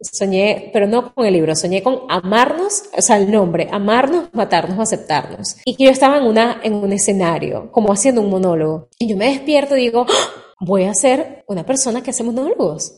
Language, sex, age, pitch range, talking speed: English, female, 30-49, 200-285 Hz, 205 wpm